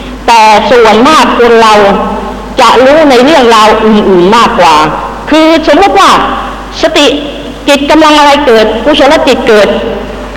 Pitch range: 230-285 Hz